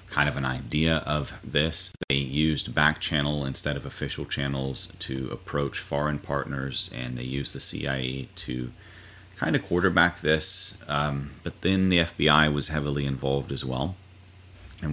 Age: 30-49